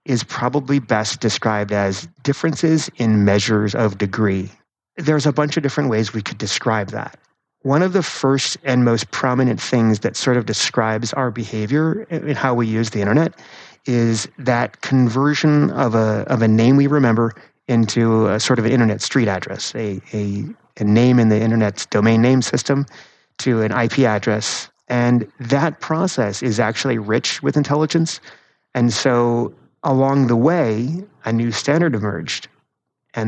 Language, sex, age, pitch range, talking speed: English, male, 30-49, 110-135 Hz, 160 wpm